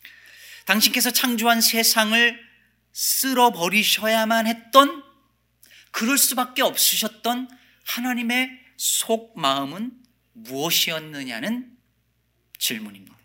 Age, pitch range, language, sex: 40-59, 135-230 Hz, Korean, male